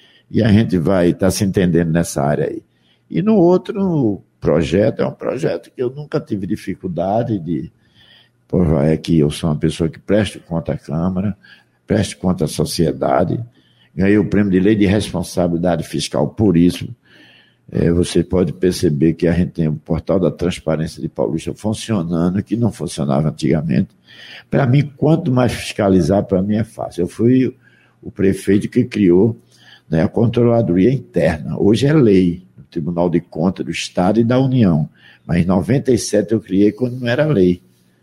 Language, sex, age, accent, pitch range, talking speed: Portuguese, male, 60-79, Brazilian, 85-110 Hz, 165 wpm